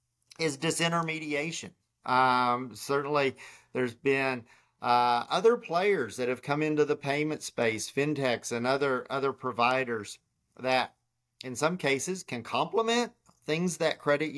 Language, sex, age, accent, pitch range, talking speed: English, male, 40-59, American, 120-150 Hz, 125 wpm